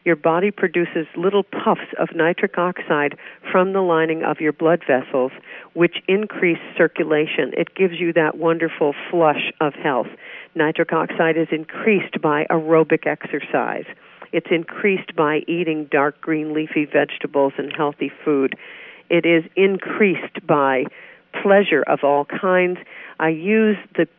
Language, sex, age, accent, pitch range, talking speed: English, female, 50-69, American, 150-180 Hz, 135 wpm